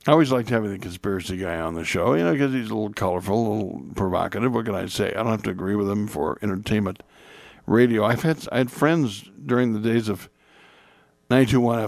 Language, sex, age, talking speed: English, male, 60-79, 220 wpm